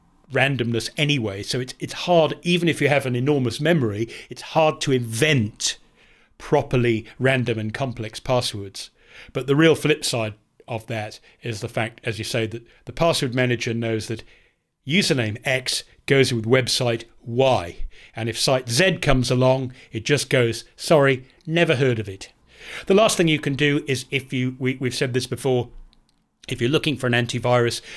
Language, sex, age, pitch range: English, male, 40-59, 115-135 Hz